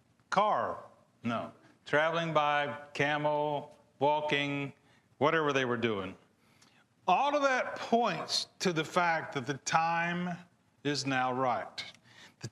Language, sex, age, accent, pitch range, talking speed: English, male, 40-59, American, 135-180 Hz, 115 wpm